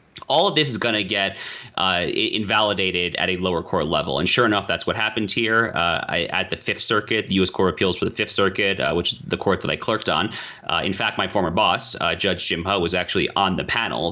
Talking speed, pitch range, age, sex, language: 245 wpm, 95-130 Hz, 30-49, male, English